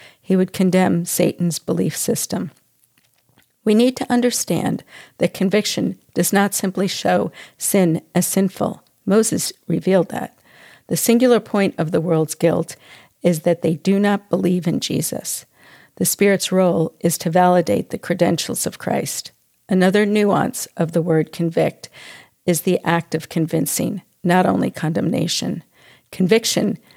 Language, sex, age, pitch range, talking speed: English, female, 50-69, 170-195 Hz, 140 wpm